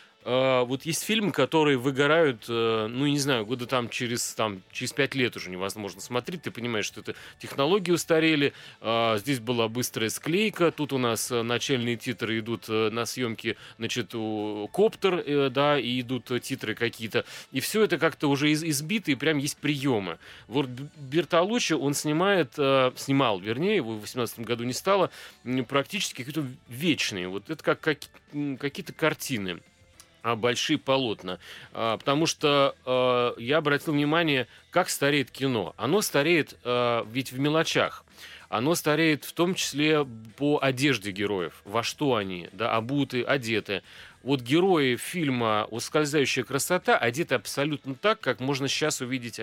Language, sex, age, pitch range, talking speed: Russian, male, 30-49, 115-150 Hz, 145 wpm